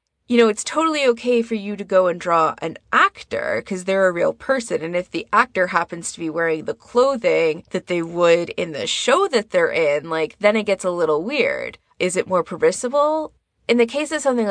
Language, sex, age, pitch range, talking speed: English, female, 20-39, 170-235 Hz, 220 wpm